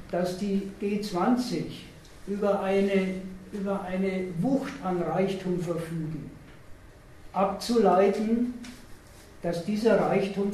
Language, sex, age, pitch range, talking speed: German, male, 60-79, 170-200 Hz, 85 wpm